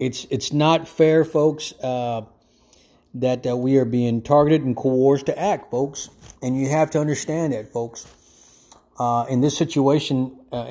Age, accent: 30-49, American